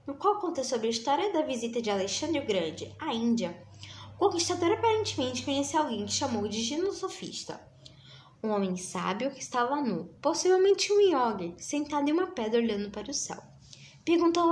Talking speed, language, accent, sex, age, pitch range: 170 wpm, Portuguese, Brazilian, female, 10-29, 205-300 Hz